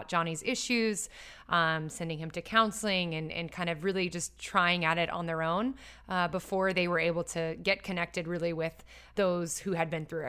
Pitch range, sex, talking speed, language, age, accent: 165-195 Hz, female, 200 wpm, English, 20-39, American